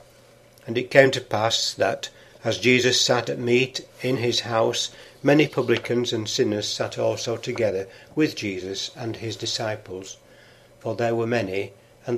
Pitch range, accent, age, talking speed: 110-130 Hz, British, 60-79, 155 wpm